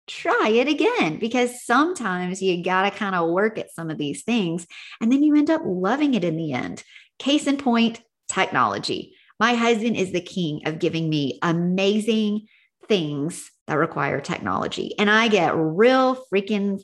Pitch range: 175-235 Hz